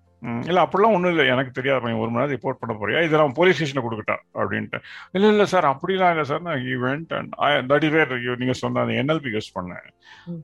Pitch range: 115-155 Hz